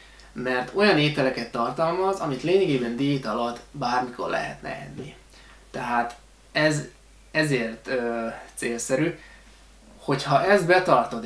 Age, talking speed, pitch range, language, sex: 20-39, 100 wpm, 120-145 Hz, Hungarian, male